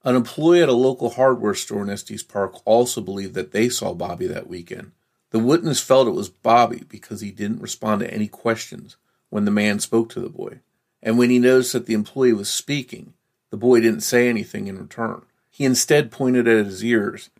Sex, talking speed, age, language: male, 205 wpm, 40-59, English